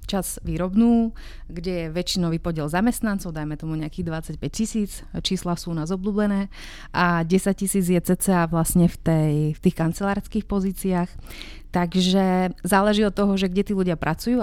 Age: 30-49